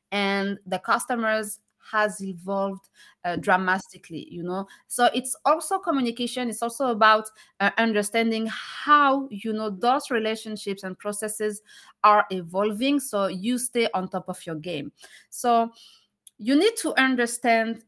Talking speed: 135 wpm